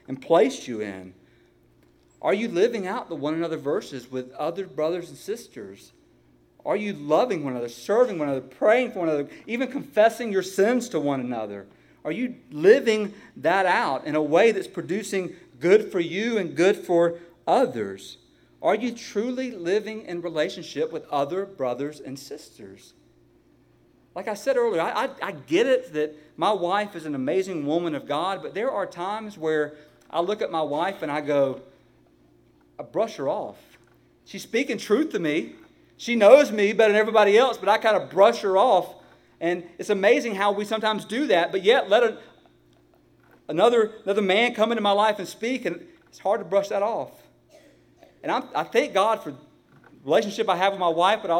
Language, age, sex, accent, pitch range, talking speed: English, 40-59, male, American, 135-215 Hz, 190 wpm